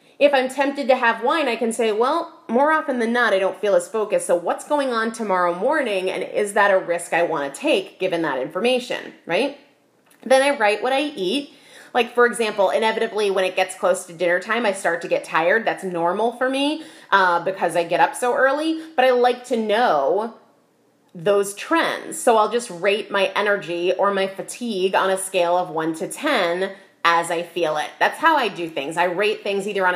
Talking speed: 215 wpm